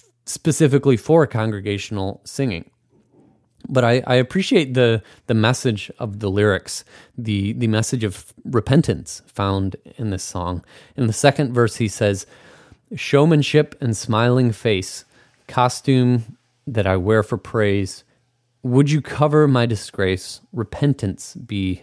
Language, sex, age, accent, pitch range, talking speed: English, male, 30-49, American, 100-125 Hz, 125 wpm